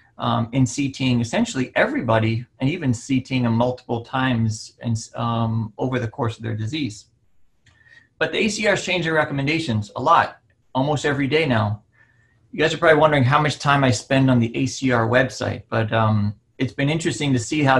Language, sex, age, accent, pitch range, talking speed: English, male, 30-49, American, 115-145 Hz, 180 wpm